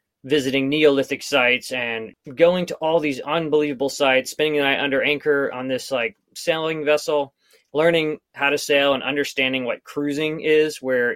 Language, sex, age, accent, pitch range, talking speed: English, male, 20-39, American, 120-150 Hz, 160 wpm